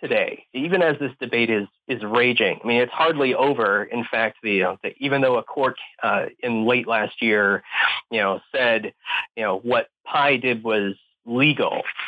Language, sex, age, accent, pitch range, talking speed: English, male, 30-49, American, 110-140 Hz, 180 wpm